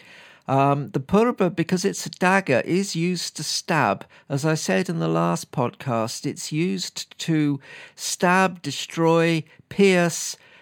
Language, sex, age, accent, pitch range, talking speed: English, male, 50-69, British, 140-175 Hz, 135 wpm